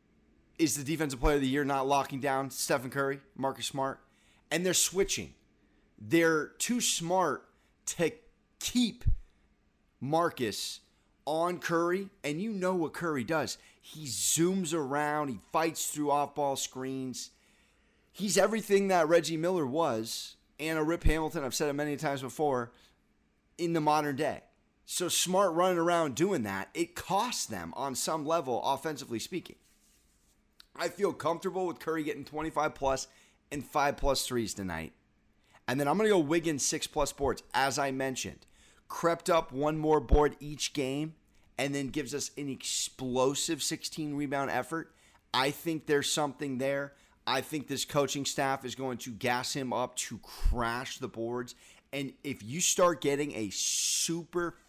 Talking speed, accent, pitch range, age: 150 wpm, American, 130-165 Hz, 30-49